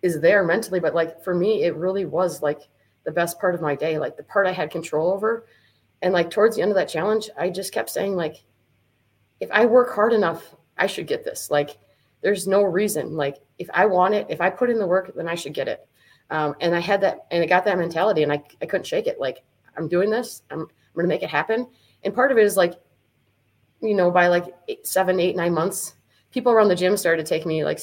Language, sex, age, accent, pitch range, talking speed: English, female, 30-49, American, 150-200 Hz, 250 wpm